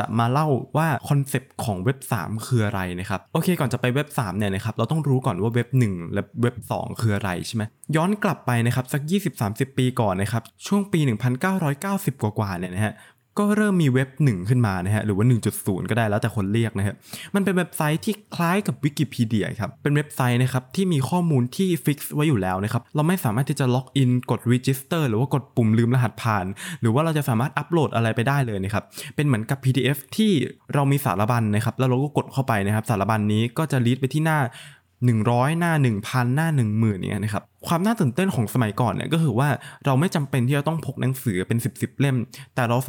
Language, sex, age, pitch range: Thai, male, 20-39, 115-150 Hz